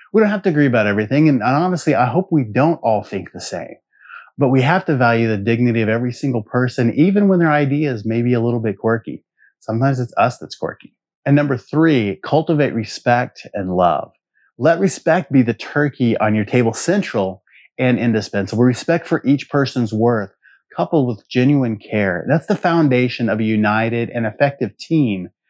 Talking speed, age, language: 185 wpm, 30-49, English